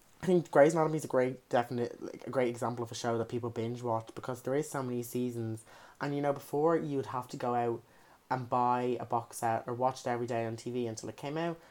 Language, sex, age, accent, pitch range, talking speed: English, male, 20-39, British, 120-150 Hz, 260 wpm